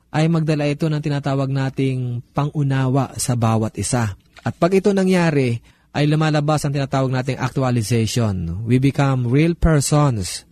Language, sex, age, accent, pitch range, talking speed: Filipino, male, 20-39, native, 130-160 Hz, 135 wpm